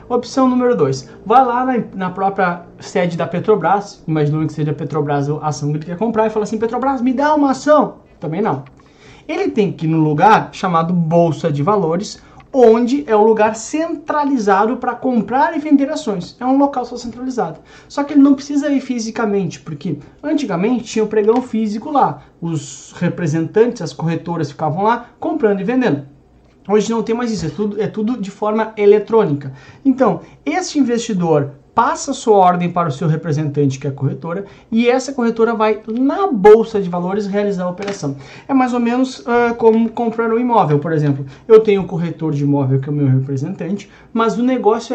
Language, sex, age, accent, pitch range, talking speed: Portuguese, male, 20-39, Brazilian, 170-245 Hz, 190 wpm